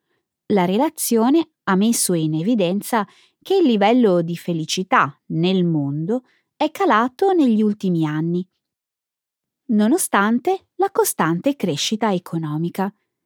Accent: native